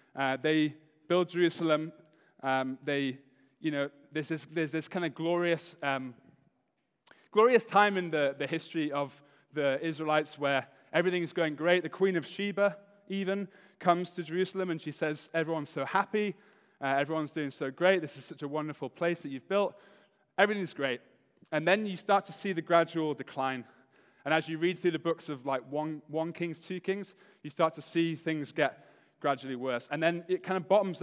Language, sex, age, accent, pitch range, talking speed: English, male, 20-39, British, 145-180 Hz, 190 wpm